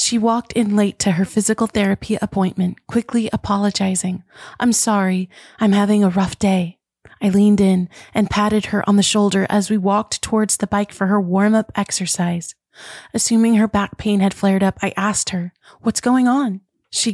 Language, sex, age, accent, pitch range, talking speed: English, female, 30-49, American, 195-215 Hz, 180 wpm